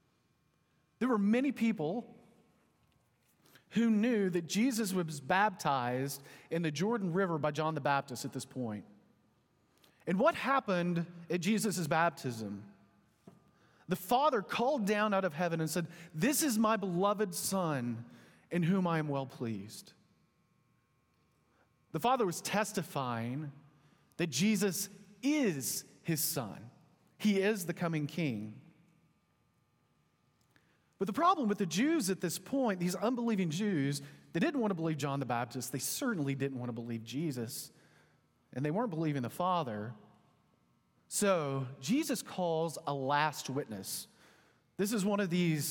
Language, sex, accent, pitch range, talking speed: English, male, American, 140-200 Hz, 140 wpm